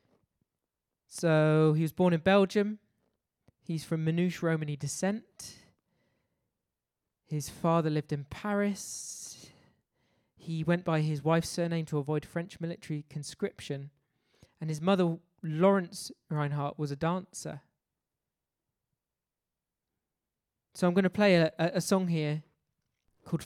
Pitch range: 150-175 Hz